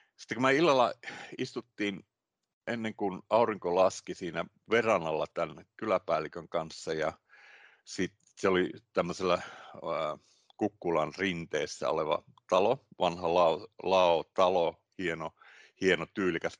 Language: Finnish